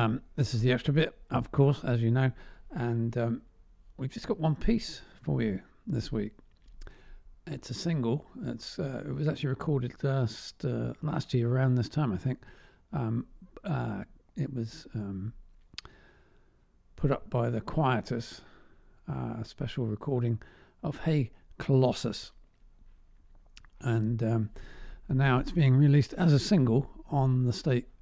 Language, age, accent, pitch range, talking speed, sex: English, 50-69, British, 115-145 Hz, 150 wpm, male